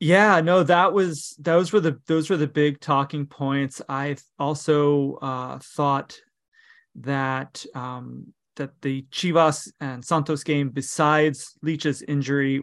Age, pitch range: 20-39, 135-155 Hz